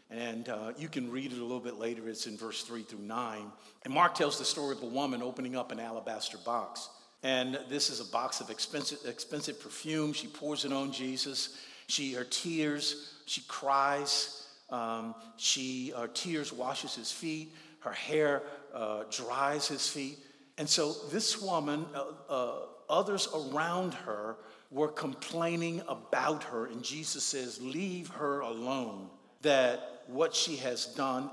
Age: 50-69